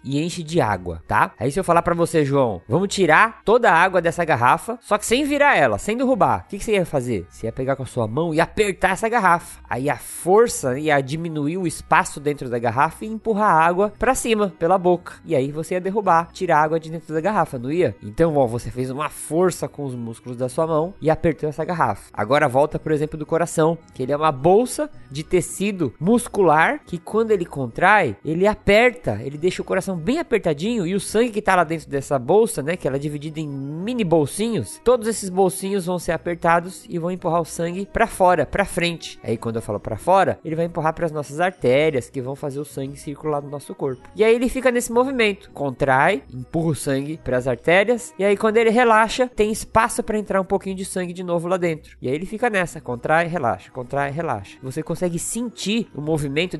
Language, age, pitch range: Portuguese, 20-39, 145-200 Hz